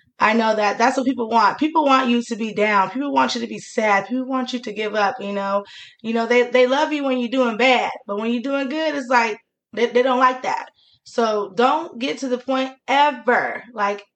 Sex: female